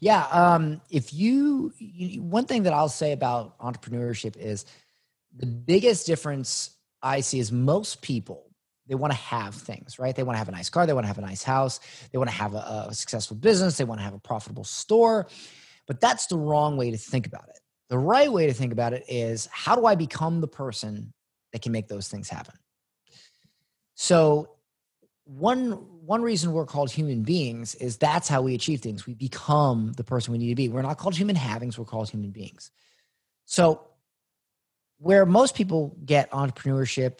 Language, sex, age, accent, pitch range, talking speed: English, male, 30-49, American, 115-160 Hz, 195 wpm